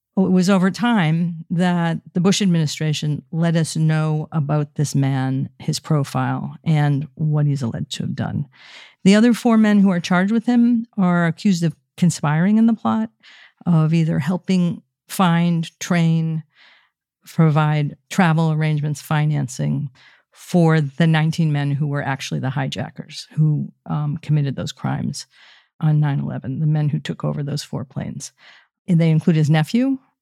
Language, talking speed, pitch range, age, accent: English, 155 wpm, 150-185 Hz, 50-69, American